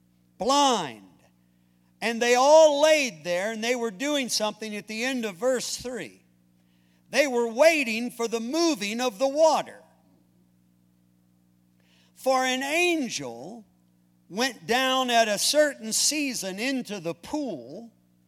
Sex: male